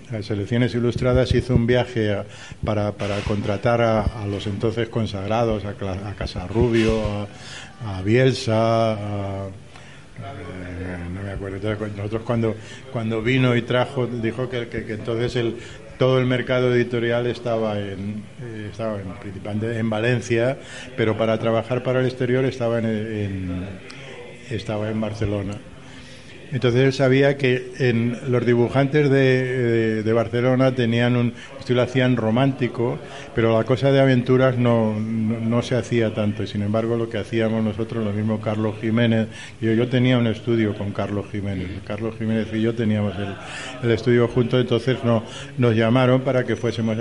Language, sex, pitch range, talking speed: Spanish, male, 105-125 Hz, 155 wpm